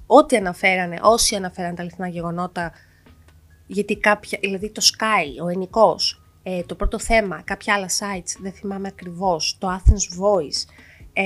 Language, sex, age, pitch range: Greek, female, 20-39, 170-220 Hz